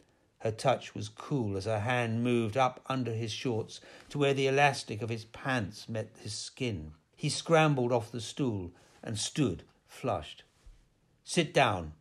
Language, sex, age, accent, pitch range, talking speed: English, male, 60-79, British, 105-130 Hz, 160 wpm